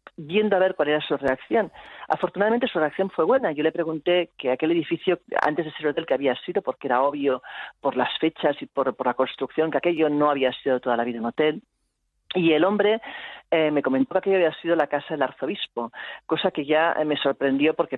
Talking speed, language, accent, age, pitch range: 220 wpm, Spanish, Spanish, 40-59, 140-180 Hz